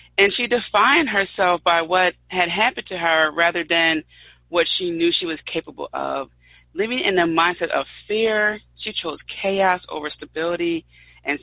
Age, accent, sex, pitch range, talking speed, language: 40-59, American, female, 140-205 Hz, 165 wpm, English